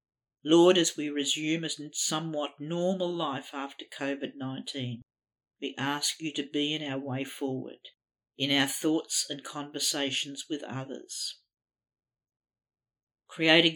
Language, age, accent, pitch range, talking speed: English, 50-69, Australian, 125-155 Hz, 120 wpm